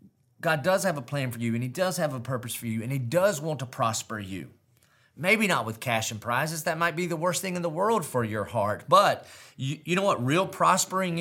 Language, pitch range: English, 105-130 Hz